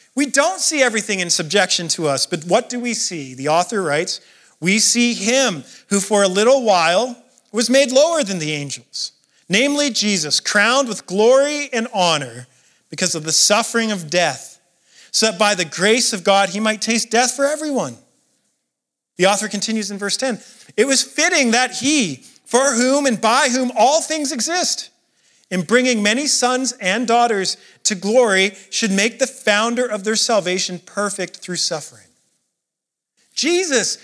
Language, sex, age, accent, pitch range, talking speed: English, male, 40-59, American, 190-255 Hz, 165 wpm